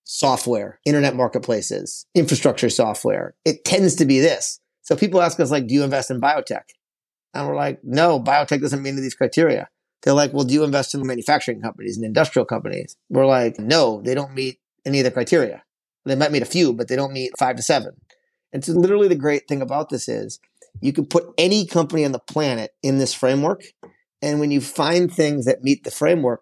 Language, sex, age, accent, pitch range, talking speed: English, male, 30-49, American, 125-155 Hz, 215 wpm